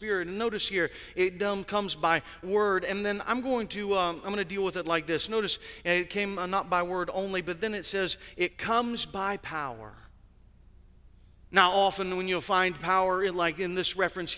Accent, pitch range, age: American, 180-220 Hz, 40-59